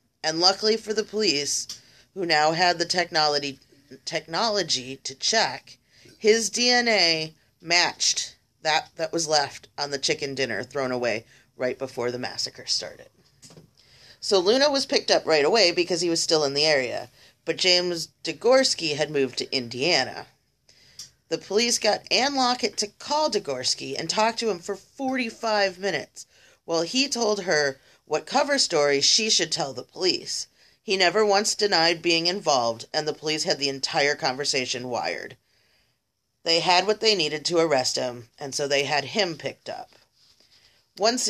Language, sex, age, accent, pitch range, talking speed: English, female, 30-49, American, 140-200 Hz, 160 wpm